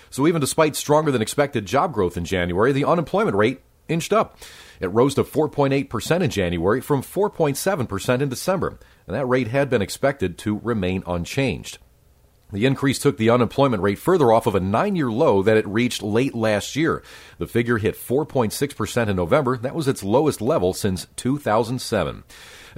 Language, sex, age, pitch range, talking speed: English, male, 40-59, 105-145 Hz, 165 wpm